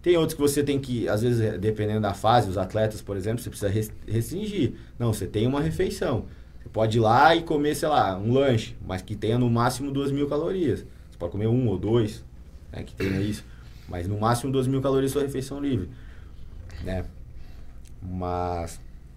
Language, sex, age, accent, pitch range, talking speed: Portuguese, male, 20-39, Brazilian, 100-130 Hz, 195 wpm